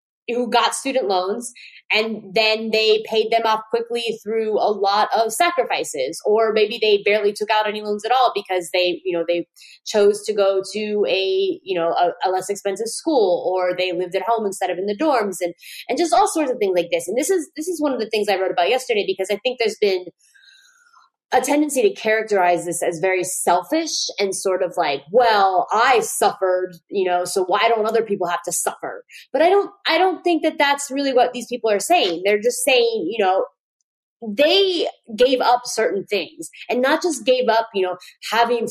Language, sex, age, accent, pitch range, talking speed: English, female, 20-39, American, 195-265 Hz, 210 wpm